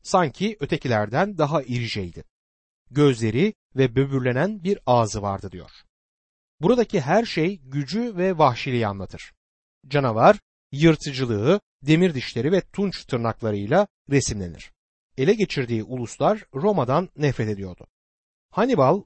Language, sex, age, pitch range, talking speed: Turkish, male, 60-79, 115-185 Hz, 105 wpm